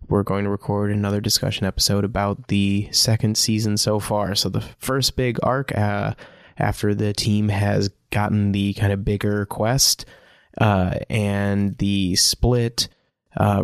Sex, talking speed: male, 150 wpm